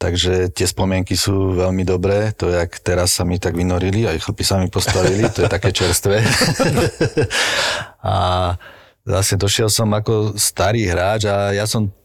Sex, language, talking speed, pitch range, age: male, Slovak, 165 wpm, 90-105 Hz, 40-59